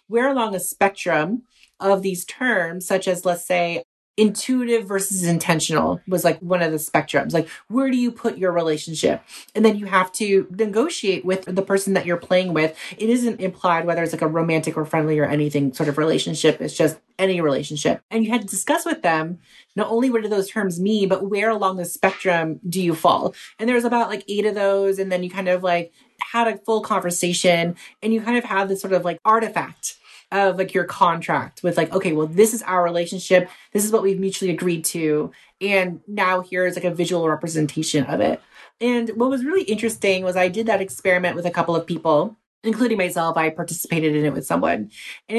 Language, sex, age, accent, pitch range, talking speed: English, female, 30-49, American, 170-215 Hz, 210 wpm